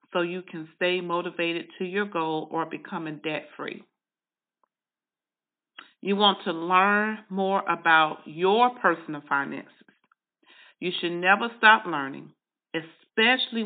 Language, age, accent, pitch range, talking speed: English, 40-59, American, 170-210 Hz, 115 wpm